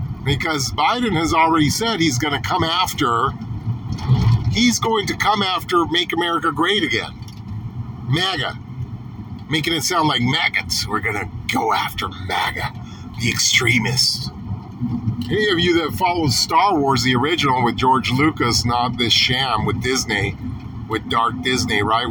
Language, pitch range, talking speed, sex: English, 120-150 Hz, 145 wpm, male